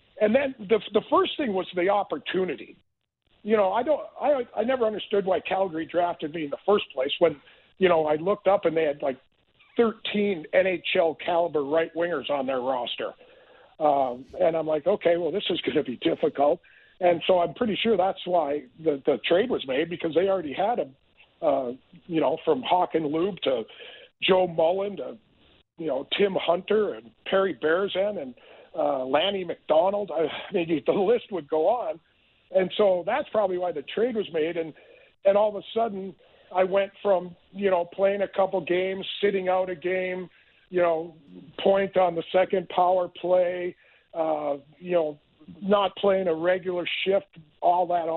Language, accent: English, American